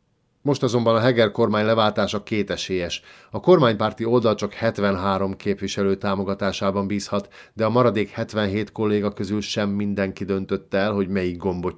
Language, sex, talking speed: Hungarian, male, 145 wpm